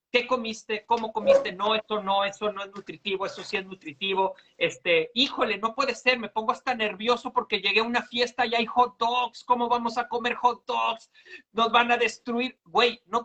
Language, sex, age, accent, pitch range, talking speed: Spanish, male, 50-69, Mexican, 190-230 Hz, 205 wpm